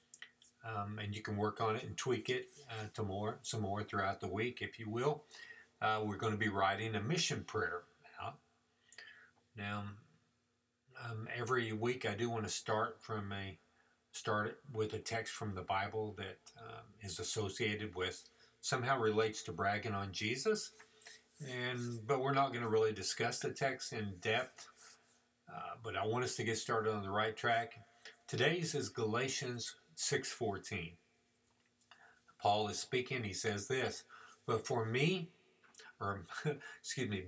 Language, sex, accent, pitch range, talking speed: English, male, American, 105-120 Hz, 165 wpm